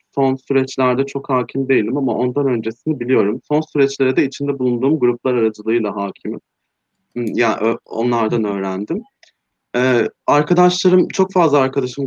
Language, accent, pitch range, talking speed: Turkish, native, 115-145 Hz, 130 wpm